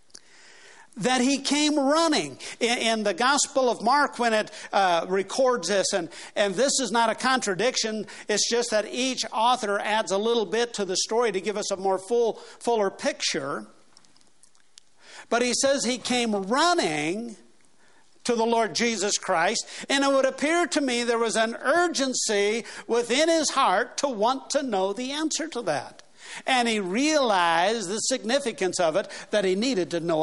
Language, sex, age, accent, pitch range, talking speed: English, male, 60-79, American, 160-255 Hz, 170 wpm